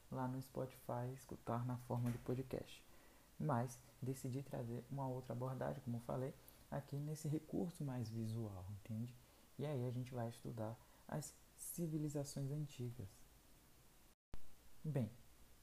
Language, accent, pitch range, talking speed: Portuguese, Brazilian, 120-155 Hz, 125 wpm